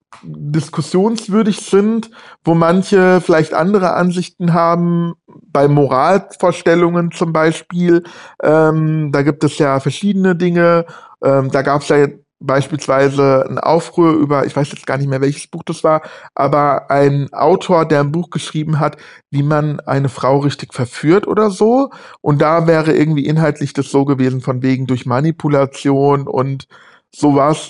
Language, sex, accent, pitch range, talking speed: English, male, German, 140-170 Hz, 145 wpm